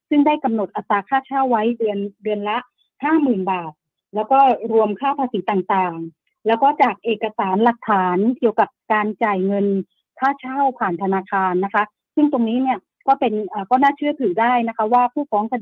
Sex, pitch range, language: female, 205-265 Hz, Thai